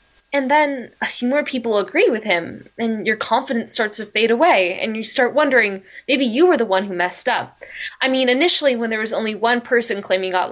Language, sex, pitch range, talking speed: English, female, 205-265 Hz, 220 wpm